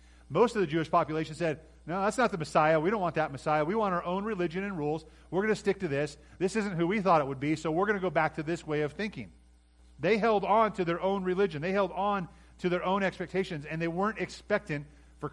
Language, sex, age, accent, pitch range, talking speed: English, male, 40-59, American, 130-180 Hz, 260 wpm